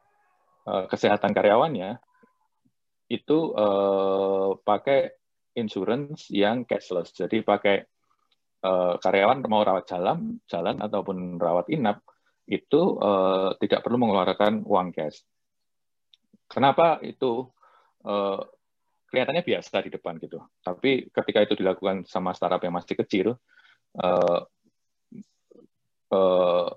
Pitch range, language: 90-105 Hz, Indonesian